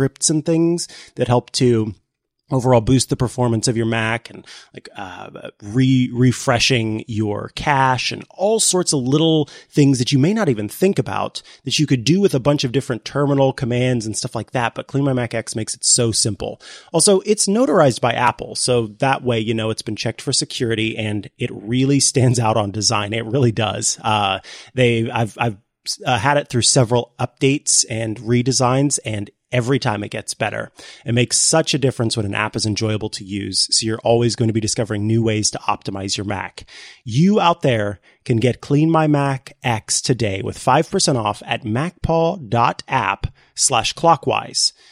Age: 30-49